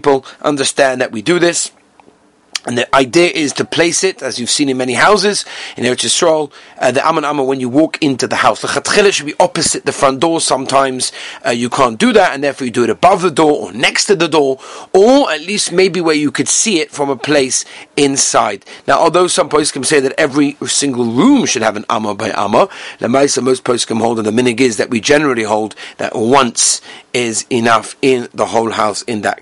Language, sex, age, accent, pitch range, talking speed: English, male, 40-59, British, 120-155 Hz, 220 wpm